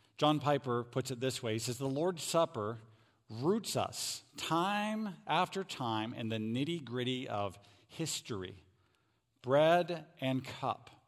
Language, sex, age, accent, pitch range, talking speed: English, male, 50-69, American, 115-145 Hz, 130 wpm